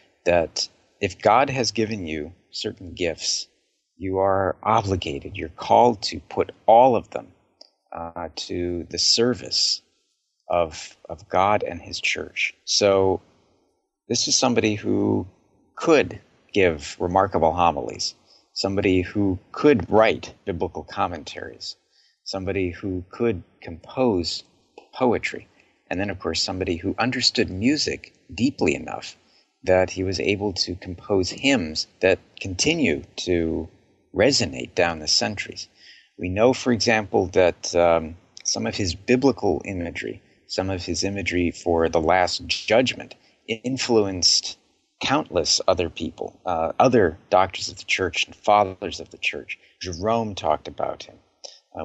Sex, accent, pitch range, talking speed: male, American, 85-105 Hz, 130 wpm